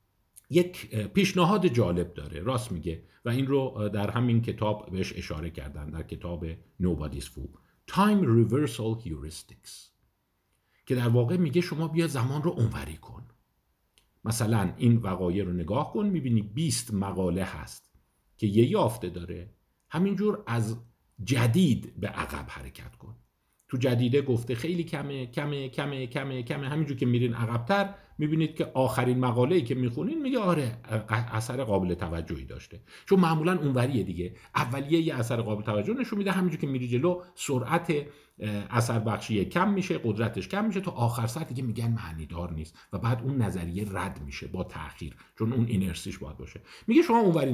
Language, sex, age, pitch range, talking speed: Persian, male, 50-69, 95-150 Hz, 155 wpm